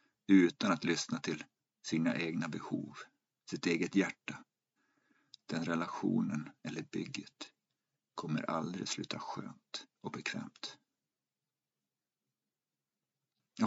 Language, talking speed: Swedish, 90 wpm